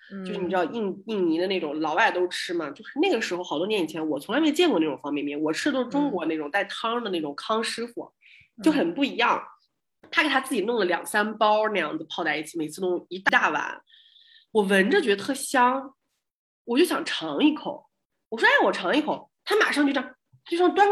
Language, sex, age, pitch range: Chinese, female, 30-49, 200-320 Hz